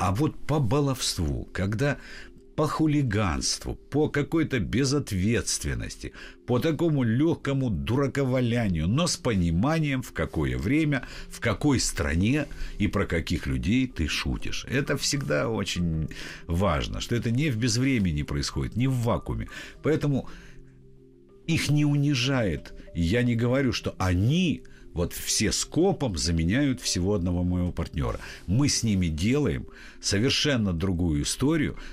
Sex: male